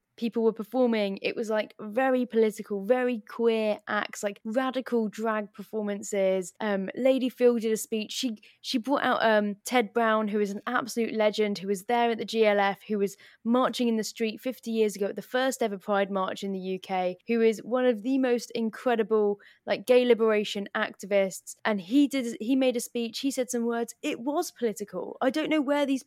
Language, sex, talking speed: English, female, 200 wpm